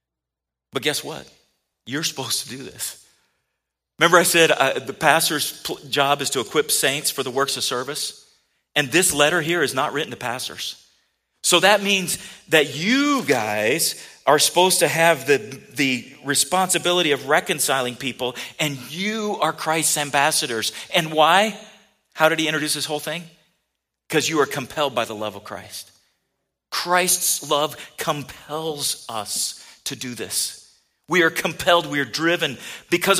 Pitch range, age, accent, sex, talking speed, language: 135-180 Hz, 40-59, American, male, 155 wpm, English